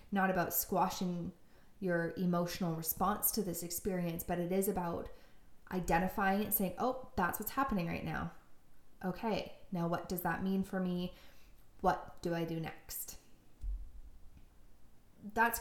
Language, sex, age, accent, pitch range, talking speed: English, female, 20-39, American, 165-190 Hz, 140 wpm